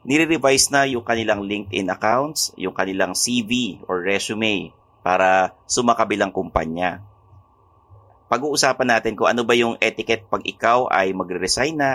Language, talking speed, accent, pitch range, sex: English, 130 wpm, Filipino, 95-120 Hz, male